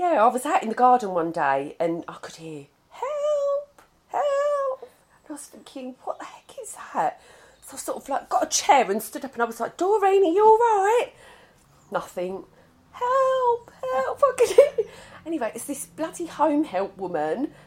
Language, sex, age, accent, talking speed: English, female, 40-59, British, 185 wpm